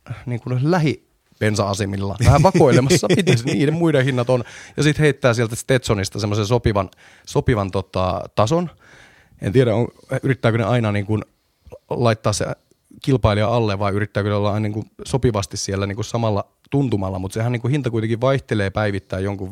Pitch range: 100-125 Hz